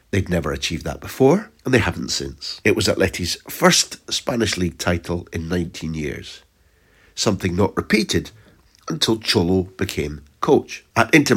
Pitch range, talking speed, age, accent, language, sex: 85-110 Hz, 150 wpm, 60-79, British, English, male